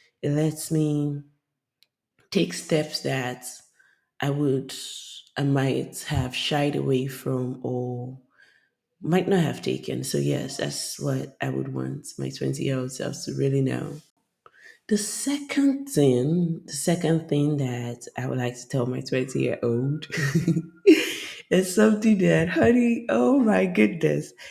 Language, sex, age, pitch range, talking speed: English, female, 20-39, 130-175 Hz, 140 wpm